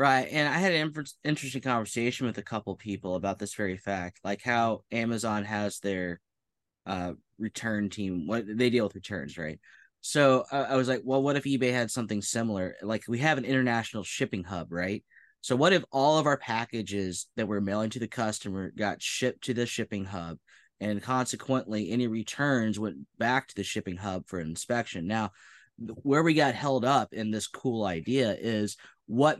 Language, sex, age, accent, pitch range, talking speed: English, male, 20-39, American, 100-125 Hz, 190 wpm